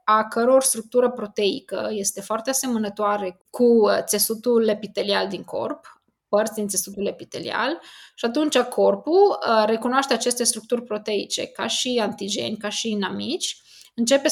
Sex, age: female, 20-39